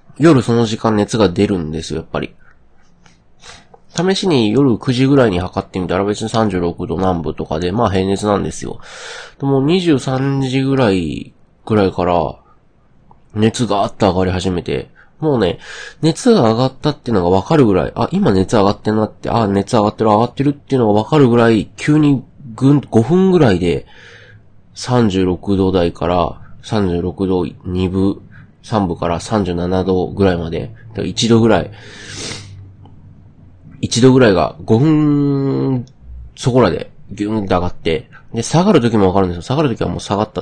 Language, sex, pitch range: Japanese, male, 95-135 Hz